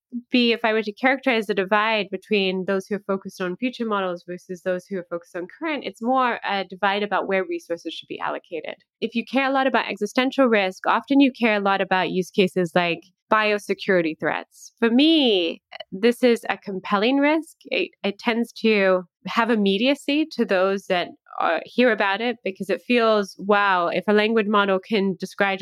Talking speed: 190 wpm